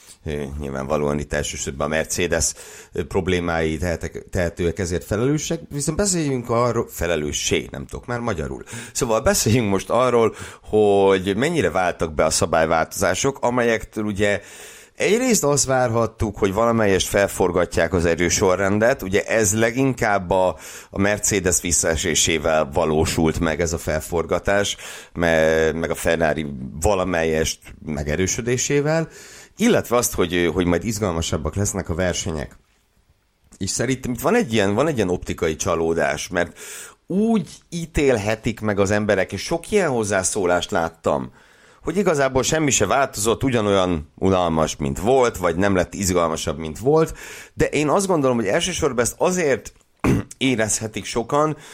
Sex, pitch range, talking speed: male, 85-120 Hz, 125 wpm